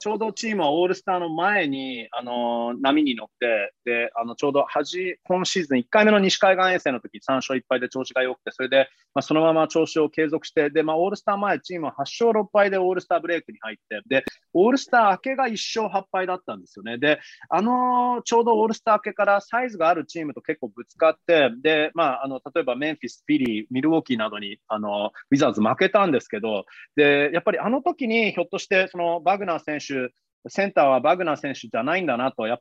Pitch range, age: 130-185 Hz, 30-49